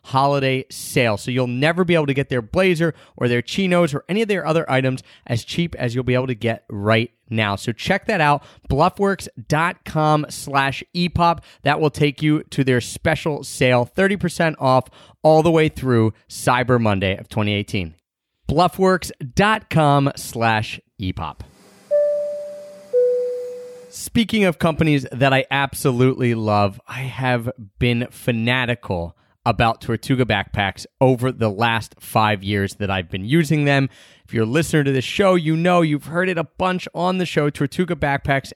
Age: 30-49